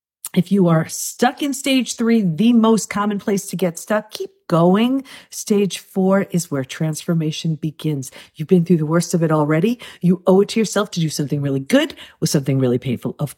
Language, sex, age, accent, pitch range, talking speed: English, female, 40-59, American, 150-225 Hz, 200 wpm